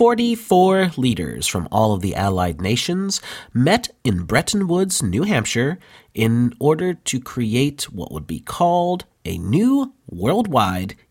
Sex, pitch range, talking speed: male, 95-155 Hz, 135 wpm